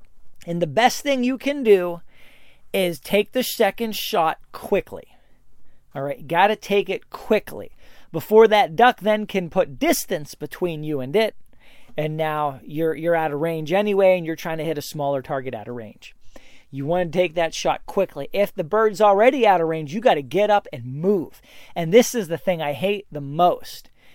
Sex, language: male, English